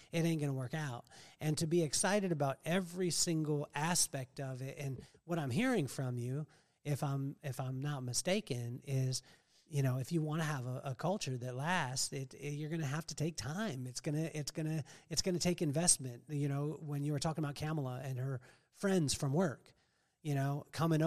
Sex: male